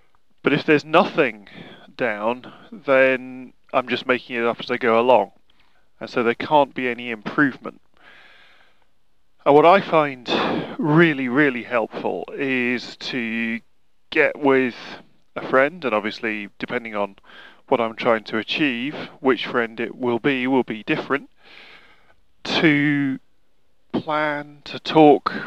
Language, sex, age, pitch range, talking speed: English, male, 20-39, 120-145 Hz, 130 wpm